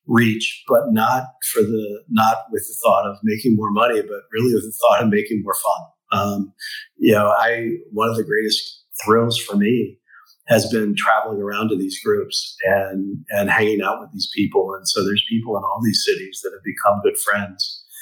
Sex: male